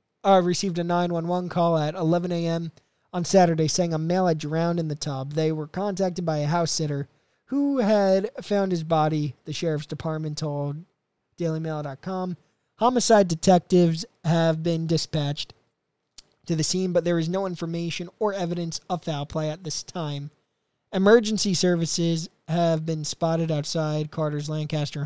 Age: 20-39